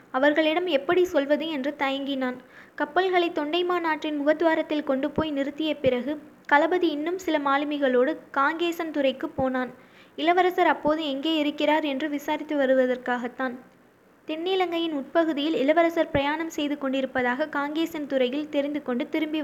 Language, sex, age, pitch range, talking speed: Tamil, female, 20-39, 270-320 Hz, 115 wpm